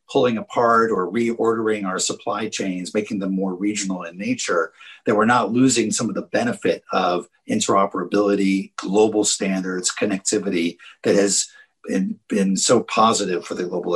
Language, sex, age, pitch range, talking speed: English, male, 50-69, 95-115 Hz, 145 wpm